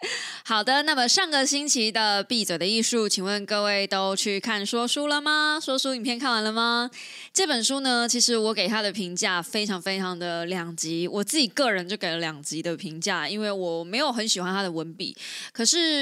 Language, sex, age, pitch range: Chinese, female, 20-39, 185-240 Hz